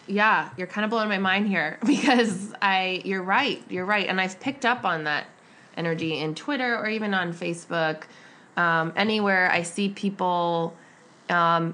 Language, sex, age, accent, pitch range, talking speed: English, female, 20-39, American, 170-220 Hz, 170 wpm